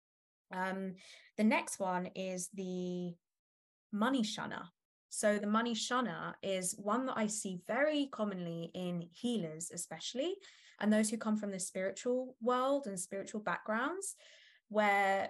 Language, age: English, 20-39